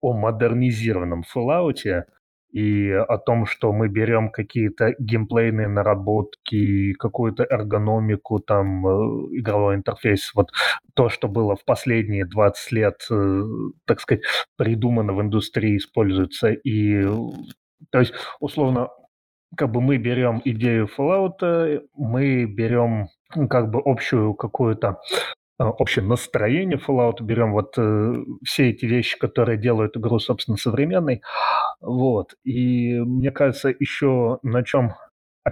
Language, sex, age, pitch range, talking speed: Russian, male, 30-49, 105-125 Hz, 115 wpm